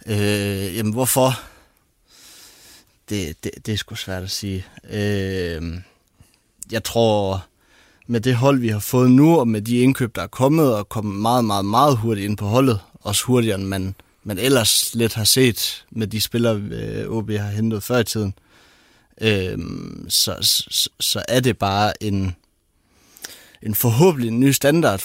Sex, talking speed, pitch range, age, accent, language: male, 160 wpm, 100-115 Hz, 30-49, native, Danish